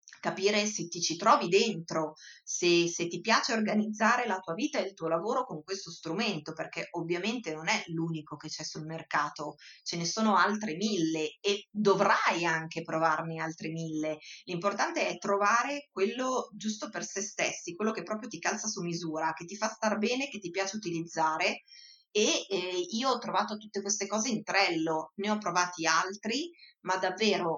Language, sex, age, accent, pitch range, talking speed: Italian, female, 30-49, native, 170-215 Hz, 175 wpm